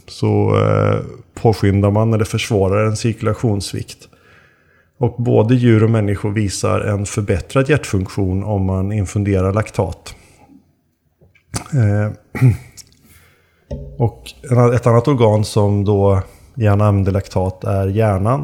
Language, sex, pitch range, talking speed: Swedish, male, 100-115 Hz, 105 wpm